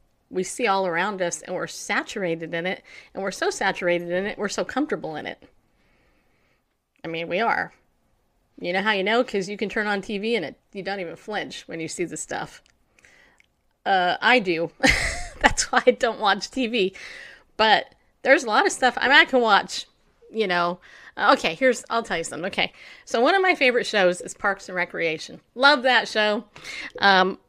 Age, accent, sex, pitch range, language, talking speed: 30-49, American, female, 180-235 Hz, English, 195 wpm